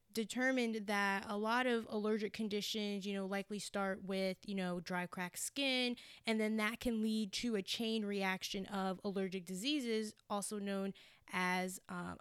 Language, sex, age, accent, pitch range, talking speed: English, female, 10-29, American, 200-225 Hz, 160 wpm